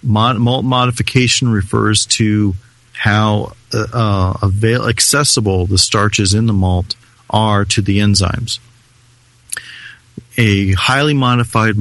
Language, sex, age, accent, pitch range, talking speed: English, male, 40-59, American, 95-115 Hz, 105 wpm